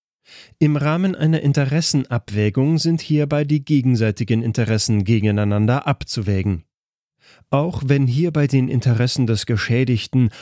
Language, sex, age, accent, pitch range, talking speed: German, male, 40-59, German, 105-140 Hz, 110 wpm